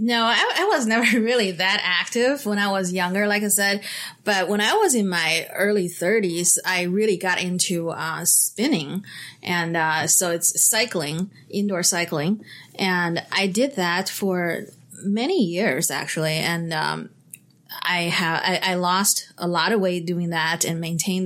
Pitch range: 170-190 Hz